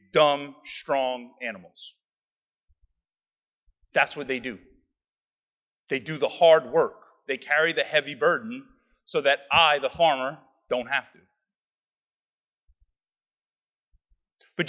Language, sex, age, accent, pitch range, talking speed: English, male, 40-59, American, 170-250 Hz, 105 wpm